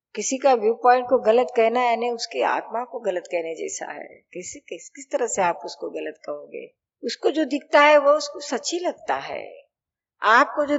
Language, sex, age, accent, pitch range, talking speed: Hindi, female, 50-69, native, 220-285 Hz, 195 wpm